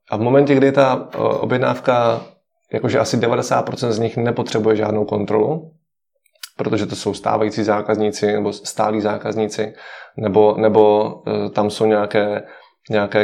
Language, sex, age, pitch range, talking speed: Czech, male, 20-39, 105-115 Hz, 120 wpm